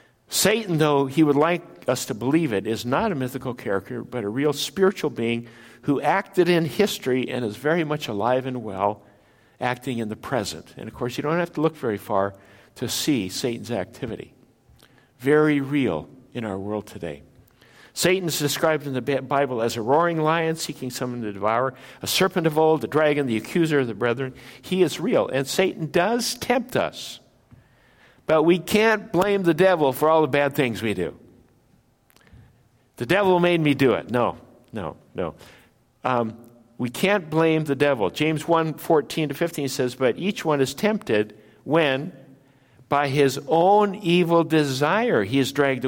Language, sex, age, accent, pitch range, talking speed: English, male, 60-79, American, 120-160 Hz, 175 wpm